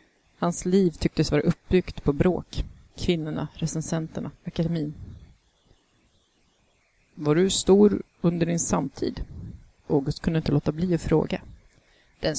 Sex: female